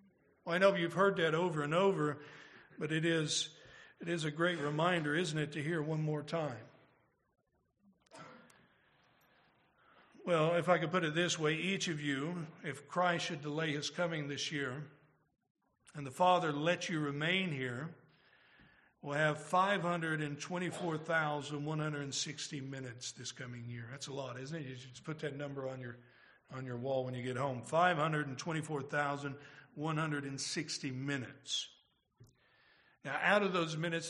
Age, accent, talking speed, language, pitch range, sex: 60-79, American, 150 wpm, English, 145-170 Hz, male